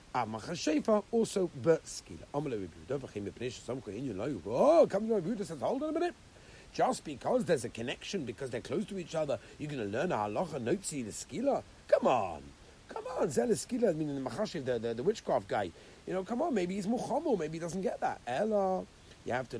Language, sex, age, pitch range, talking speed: English, male, 60-79, 110-165 Hz, 205 wpm